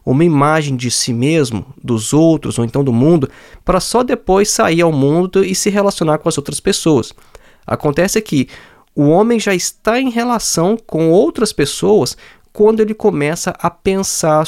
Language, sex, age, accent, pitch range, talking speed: Portuguese, male, 20-39, Brazilian, 130-170 Hz, 165 wpm